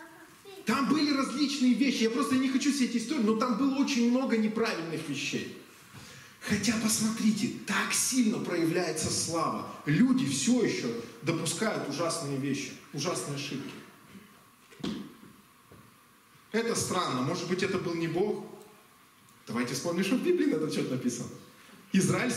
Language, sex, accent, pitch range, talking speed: Russian, male, native, 180-250 Hz, 130 wpm